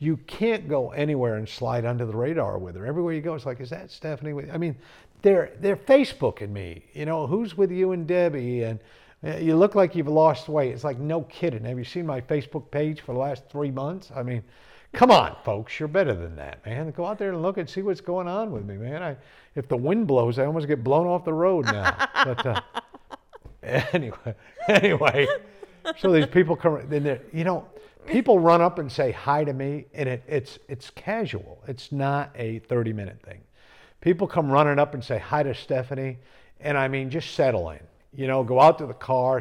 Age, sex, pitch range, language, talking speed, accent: 50-69, male, 120-165 Hz, English, 215 wpm, American